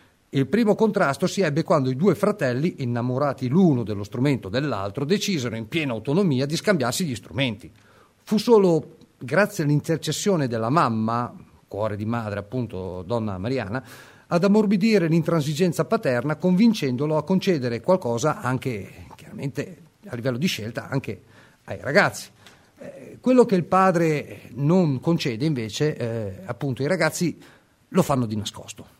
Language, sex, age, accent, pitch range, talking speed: Italian, male, 40-59, native, 120-160 Hz, 135 wpm